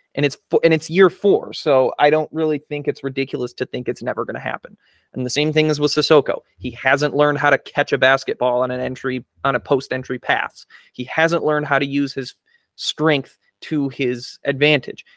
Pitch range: 130-155 Hz